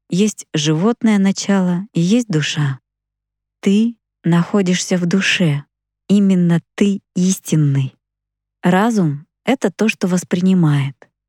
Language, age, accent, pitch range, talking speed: Russian, 20-39, native, 150-200 Hz, 95 wpm